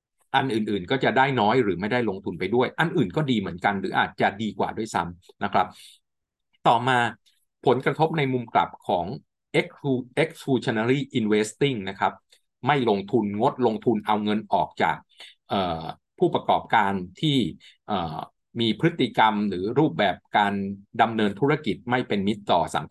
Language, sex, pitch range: Thai, male, 100-135 Hz